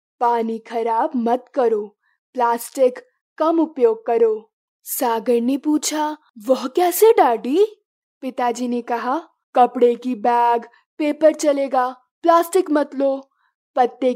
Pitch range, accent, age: 240-320 Hz, native, 20-39